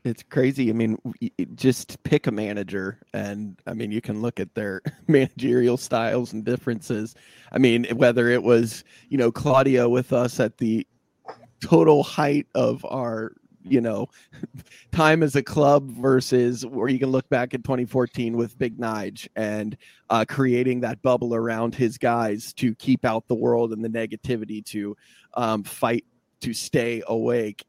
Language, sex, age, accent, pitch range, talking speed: English, male, 30-49, American, 110-130 Hz, 165 wpm